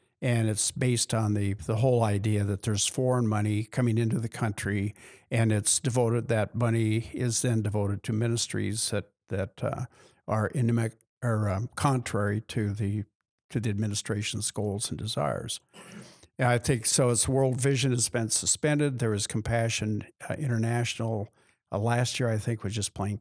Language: English